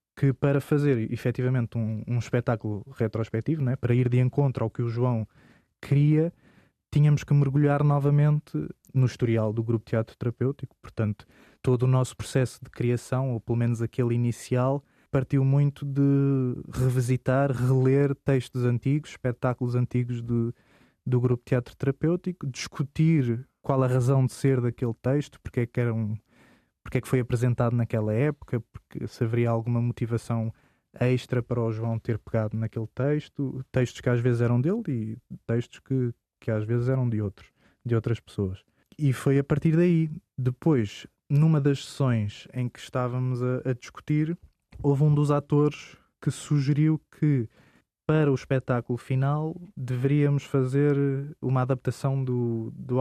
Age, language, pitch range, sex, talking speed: 20-39, Portuguese, 120-140 Hz, male, 155 wpm